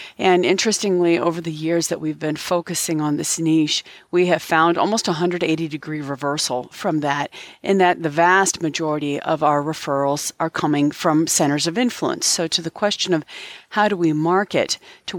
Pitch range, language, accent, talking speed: 150-180 Hz, English, American, 180 wpm